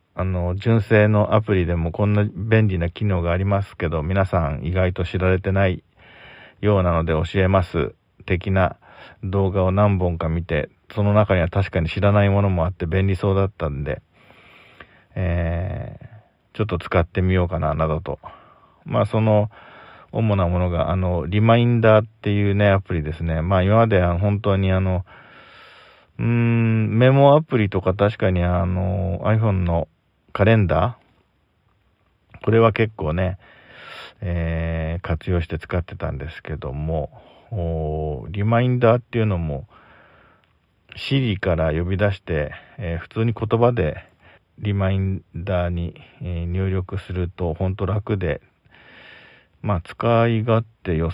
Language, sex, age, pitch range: Japanese, male, 40-59, 85-105 Hz